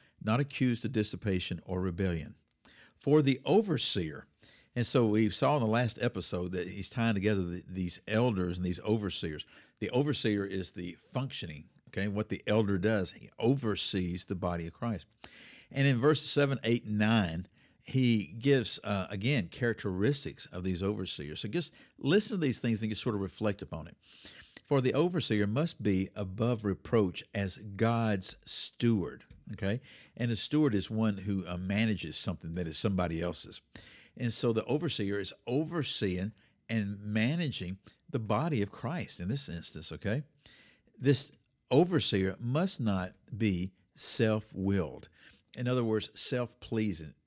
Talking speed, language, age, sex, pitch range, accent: 150 wpm, English, 50-69, male, 95-125 Hz, American